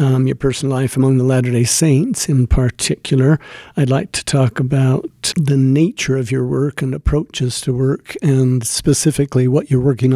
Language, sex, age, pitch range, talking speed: English, male, 50-69, 130-140 Hz, 170 wpm